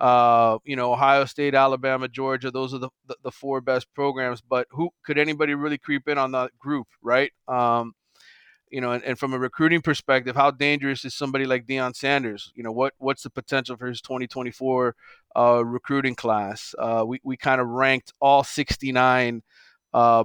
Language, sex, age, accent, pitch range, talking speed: English, male, 30-49, American, 125-140 Hz, 185 wpm